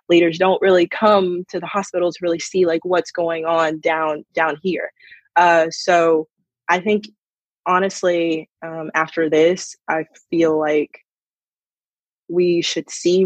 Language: English